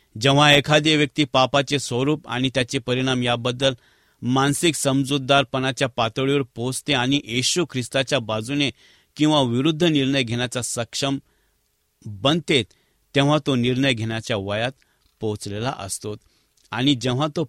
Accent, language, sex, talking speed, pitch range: Indian, English, male, 115 wpm, 115-140 Hz